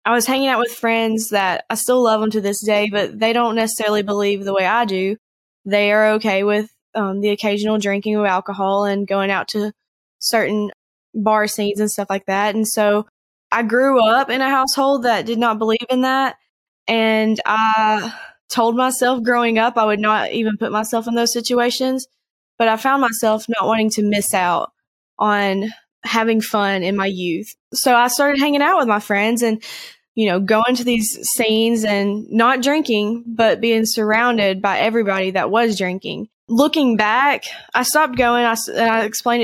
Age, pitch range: 10-29, 210-235 Hz